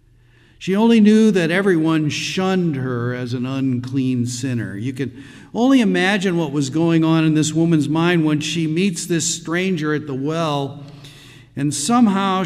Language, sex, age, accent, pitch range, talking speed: English, male, 50-69, American, 120-160 Hz, 160 wpm